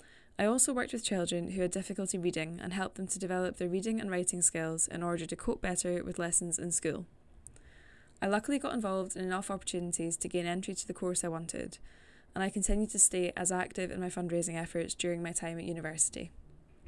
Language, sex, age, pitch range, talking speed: English, female, 10-29, 175-200 Hz, 210 wpm